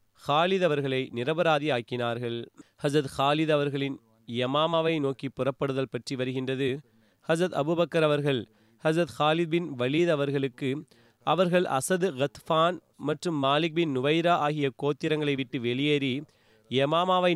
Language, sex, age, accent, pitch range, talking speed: Tamil, male, 30-49, native, 130-160 Hz, 105 wpm